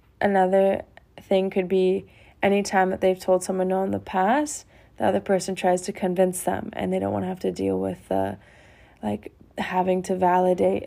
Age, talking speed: 20-39, 195 wpm